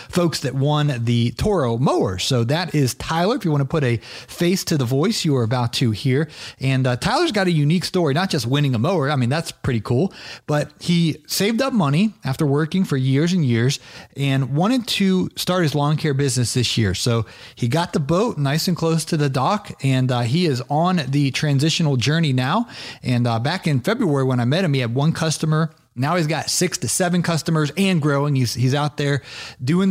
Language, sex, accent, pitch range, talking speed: English, male, American, 130-160 Hz, 220 wpm